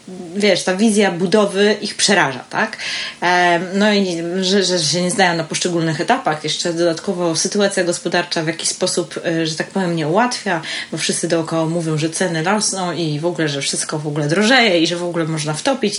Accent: native